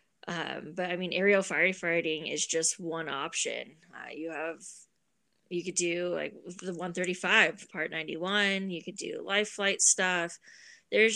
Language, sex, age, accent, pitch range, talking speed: English, female, 20-39, American, 160-185 Hz, 150 wpm